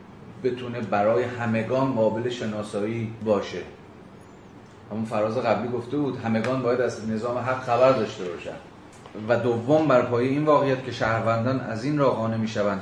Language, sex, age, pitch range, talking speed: Persian, male, 30-49, 100-120 Hz, 160 wpm